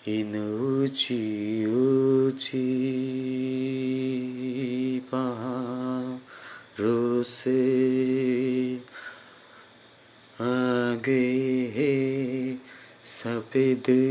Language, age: Bengali, 30-49